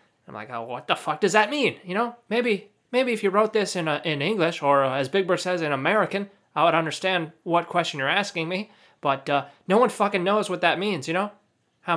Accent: American